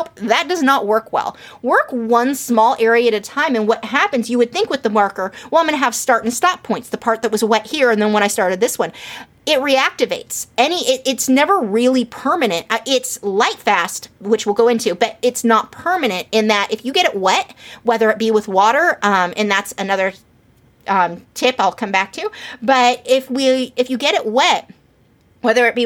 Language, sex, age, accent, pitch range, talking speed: English, female, 30-49, American, 215-265 Hz, 220 wpm